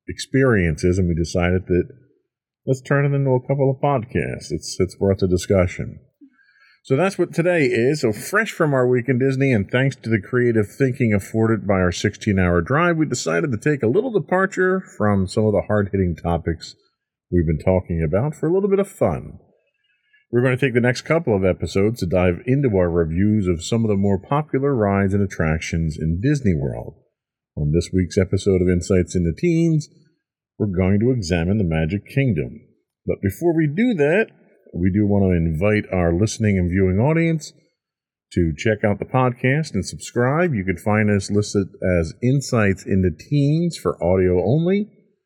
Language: English